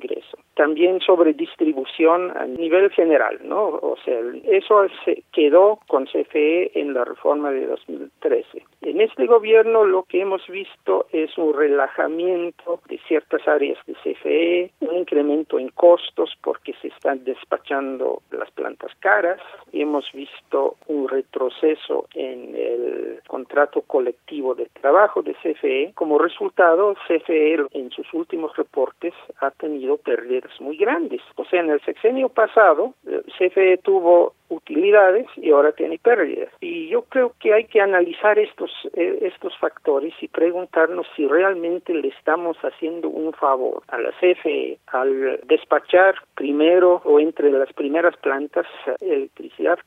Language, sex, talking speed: Spanish, male, 135 wpm